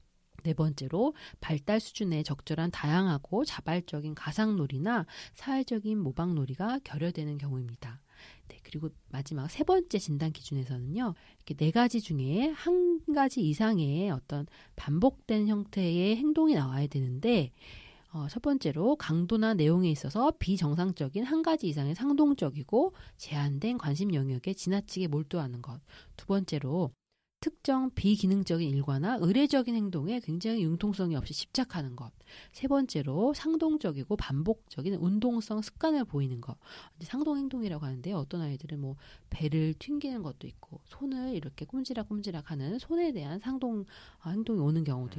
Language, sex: Korean, female